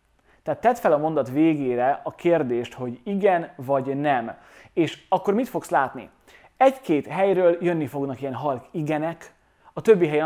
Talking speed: 150 wpm